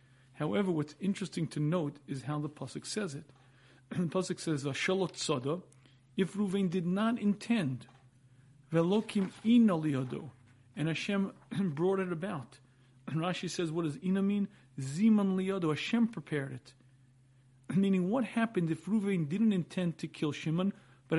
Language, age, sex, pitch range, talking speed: English, 40-59, male, 135-190 Hz, 135 wpm